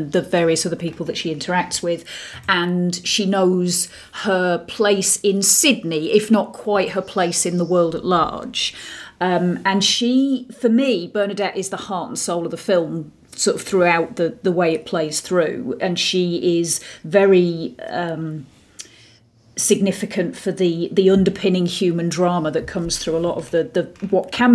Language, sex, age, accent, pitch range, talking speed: English, female, 40-59, British, 170-210 Hz, 170 wpm